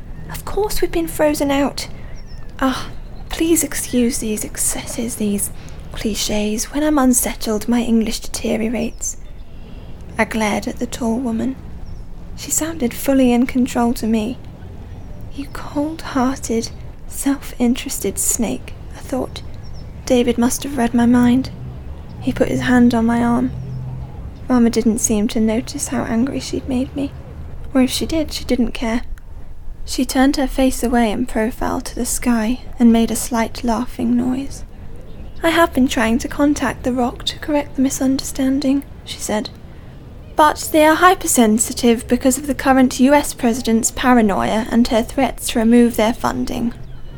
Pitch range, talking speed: 230-265 Hz, 150 wpm